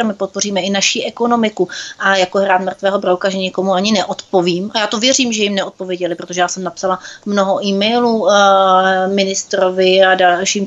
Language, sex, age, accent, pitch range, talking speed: Czech, female, 30-49, native, 185-215 Hz, 170 wpm